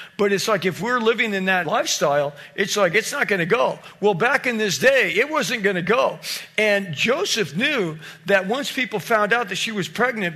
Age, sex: 50-69, male